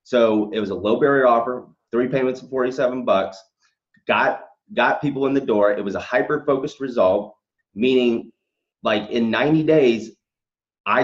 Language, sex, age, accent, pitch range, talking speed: English, male, 30-49, American, 115-155 Hz, 165 wpm